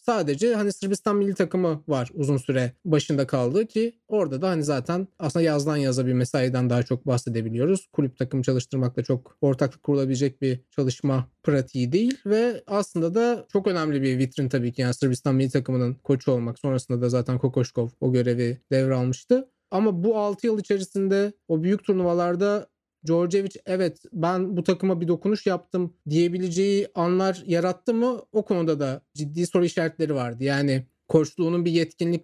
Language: Turkish